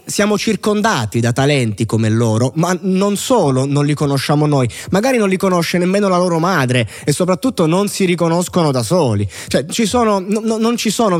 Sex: male